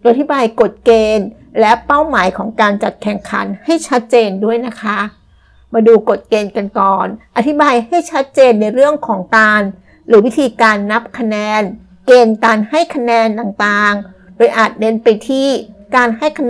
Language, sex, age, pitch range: Thai, female, 60-79, 210-245 Hz